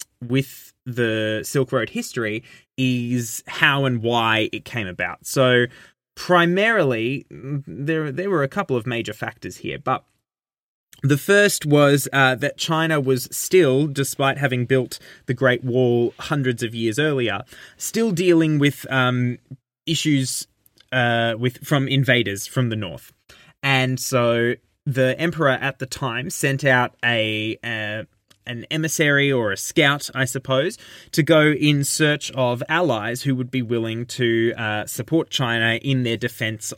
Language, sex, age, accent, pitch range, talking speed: English, male, 20-39, Australian, 115-145 Hz, 145 wpm